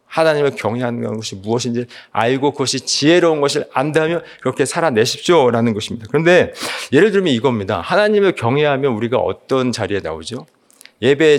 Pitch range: 115-175 Hz